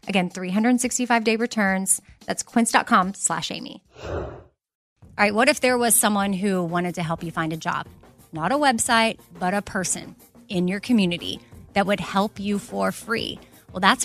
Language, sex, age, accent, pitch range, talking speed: English, female, 20-39, American, 185-230 Hz, 170 wpm